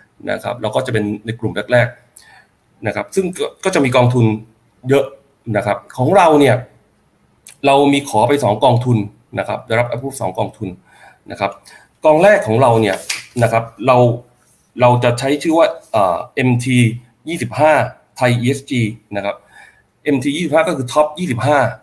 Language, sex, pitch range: Thai, male, 115-140 Hz